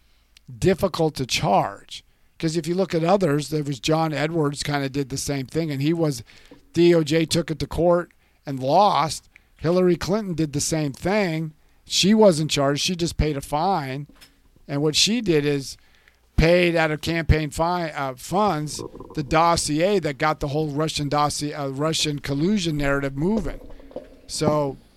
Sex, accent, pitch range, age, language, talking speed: male, American, 140-165 Hz, 50-69, English, 160 wpm